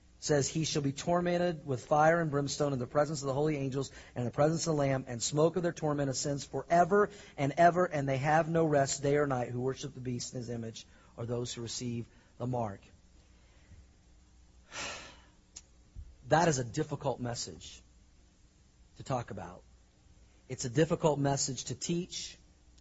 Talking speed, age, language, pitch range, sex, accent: 175 wpm, 40-59, English, 120-165 Hz, male, American